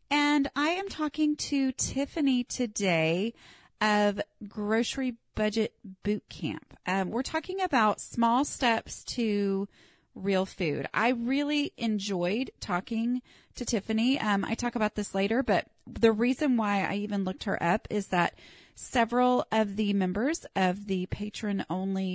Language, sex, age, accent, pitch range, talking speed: English, female, 30-49, American, 190-245 Hz, 135 wpm